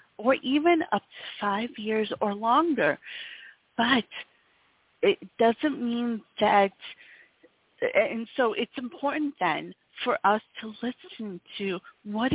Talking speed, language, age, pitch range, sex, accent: 115 wpm, English, 40-59, 195-250 Hz, female, American